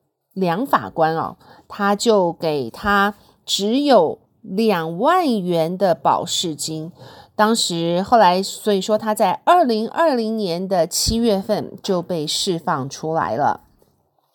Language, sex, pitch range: Chinese, female, 170-225 Hz